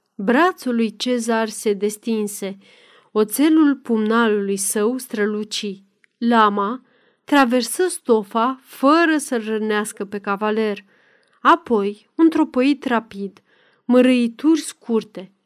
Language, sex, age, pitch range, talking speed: Romanian, female, 30-49, 210-265 Hz, 90 wpm